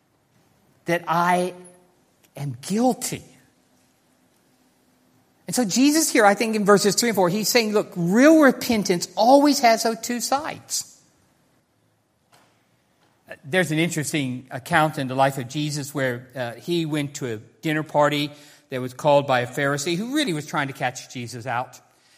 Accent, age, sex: American, 50-69, male